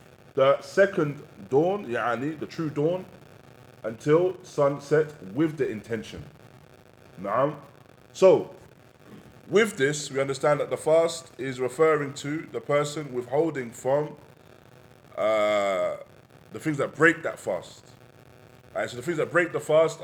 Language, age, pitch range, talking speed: English, 20-39, 125-145 Hz, 120 wpm